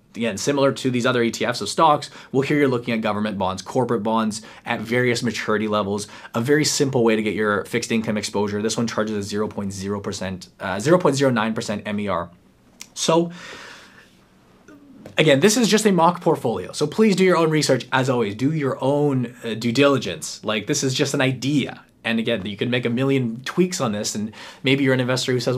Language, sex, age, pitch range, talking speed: English, male, 20-39, 110-140 Hz, 195 wpm